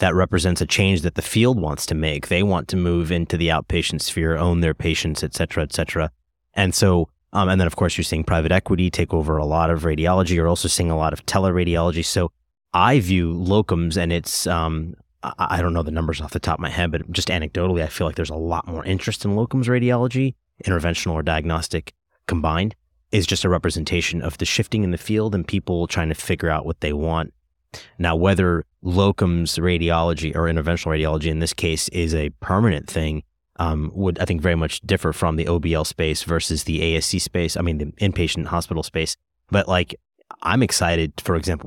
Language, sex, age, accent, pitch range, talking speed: English, male, 30-49, American, 80-95 Hz, 210 wpm